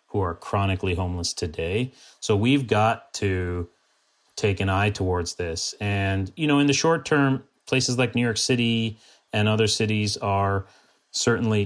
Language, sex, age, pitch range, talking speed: English, male, 30-49, 95-110 Hz, 160 wpm